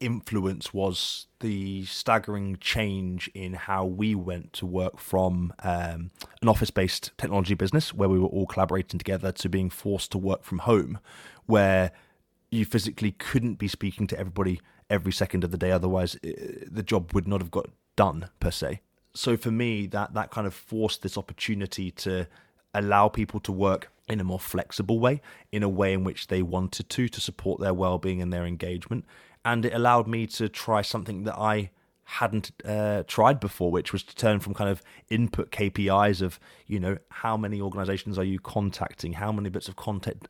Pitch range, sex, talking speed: 95-110 Hz, male, 185 wpm